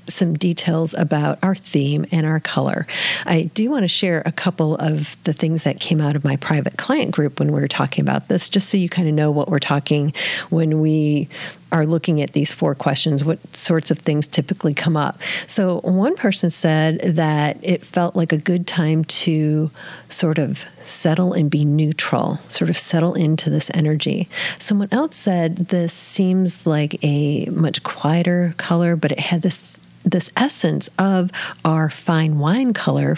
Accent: American